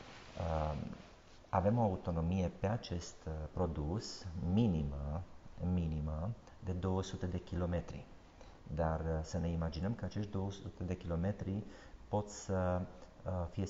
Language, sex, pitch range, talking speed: Romanian, male, 80-95 Hz, 105 wpm